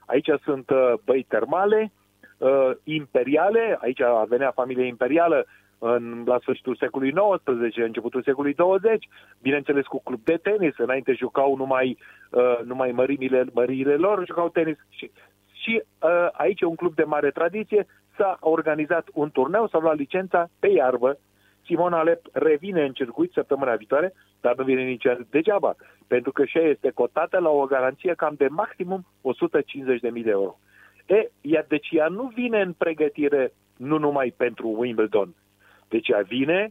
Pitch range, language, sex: 125-175 Hz, Romanian, male